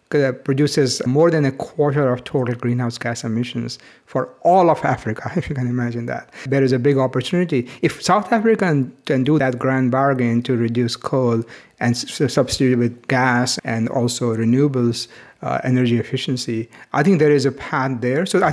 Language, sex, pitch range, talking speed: English, male, 125-150 Hz, 175 wpm